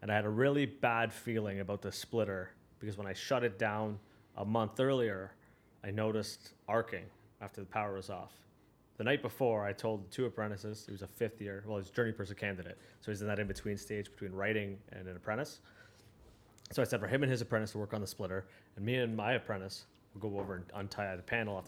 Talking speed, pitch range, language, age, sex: 225 wpm, 100-115 Hz, English, 30-49, male